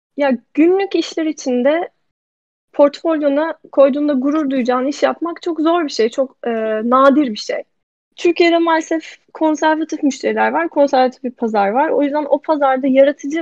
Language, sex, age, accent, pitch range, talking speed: Turkish, female, 10-29, native, 260-325 Hz, 150 wpm